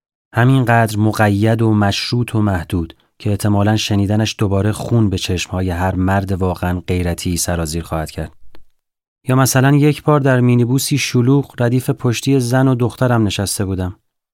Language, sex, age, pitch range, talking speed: Persian, male, 30-49, 100-120 Hz, 140 wpm